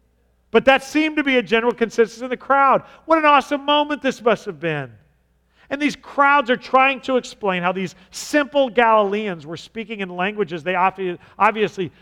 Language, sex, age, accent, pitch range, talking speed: English, male, 40-59, American, 165-235 Hz, 180 wpm